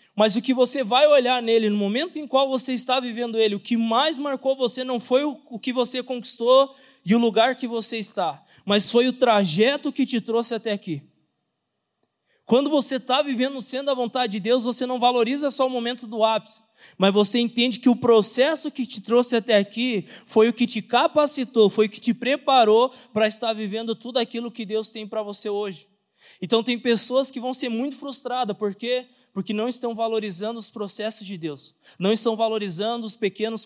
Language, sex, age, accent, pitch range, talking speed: Portuguese, male, 20-39, Brazilian, 205-245 Hz, 200 wpm